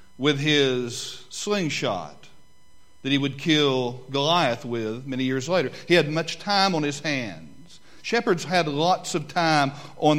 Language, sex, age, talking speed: English, male, 50-69, 145 wpm